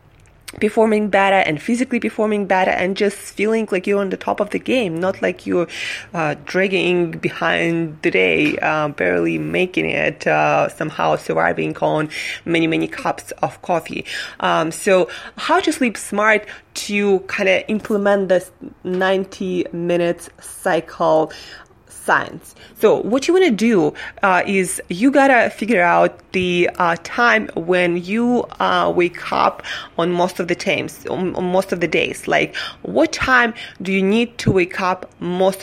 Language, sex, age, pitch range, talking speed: English, female, 20-39, 170-215 Hz, 155 wpm